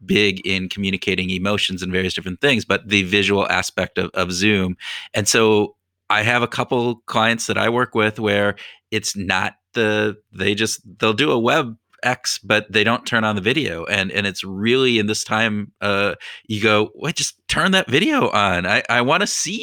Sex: male